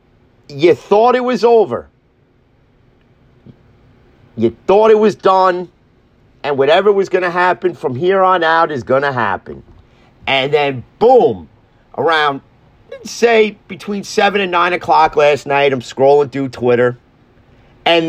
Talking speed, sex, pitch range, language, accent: 135 wpm, male, 135-215 Hz, English, American